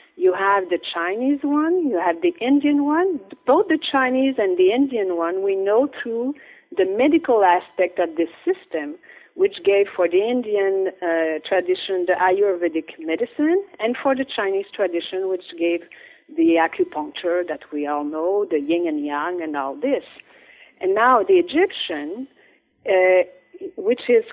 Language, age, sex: English, 50-69, female